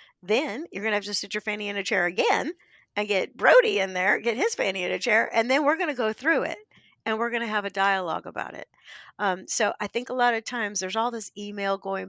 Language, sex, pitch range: English, female, 185-225 Hz